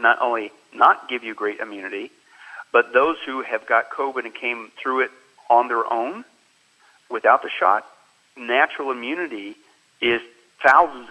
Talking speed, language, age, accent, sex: 145 wpm, English, 50-69, American, male